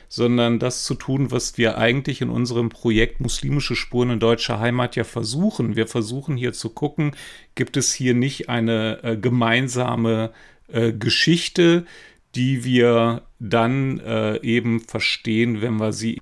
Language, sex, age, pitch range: German, male, 40-59, 115-125 Hz